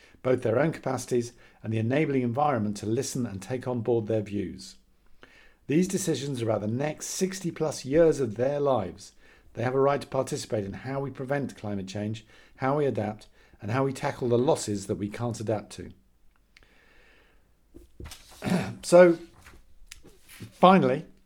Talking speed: 160 wpm